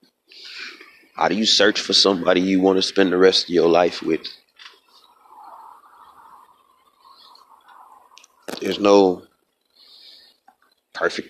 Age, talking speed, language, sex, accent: 30-49, 100 wpm, English, male, American